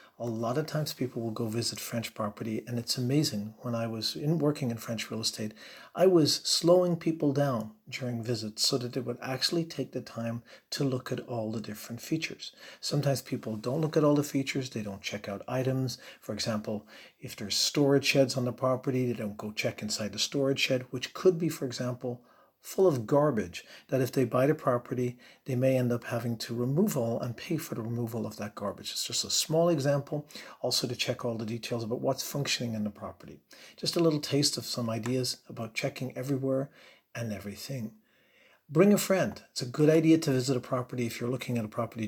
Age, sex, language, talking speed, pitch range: 50-69, male, English, 215 wpm, 115-145 Hz